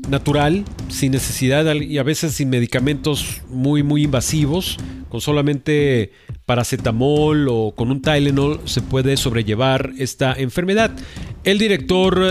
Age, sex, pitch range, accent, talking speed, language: 40-59, male, 125-155 Hz, Mexican, 120 wpm, Spanish